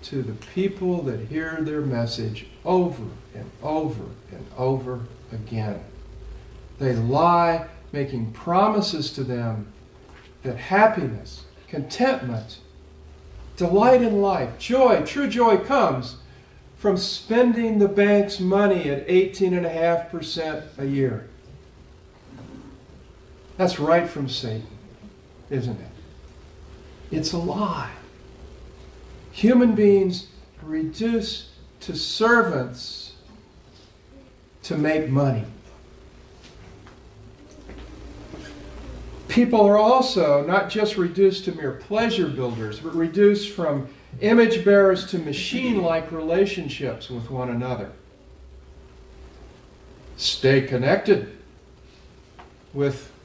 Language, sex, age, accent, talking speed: English, male, 50-69, American, 90 wpm